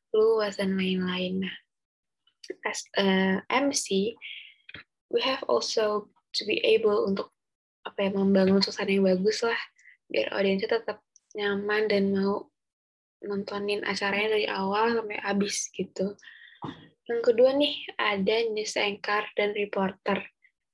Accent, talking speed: Indonesian, 115 wpm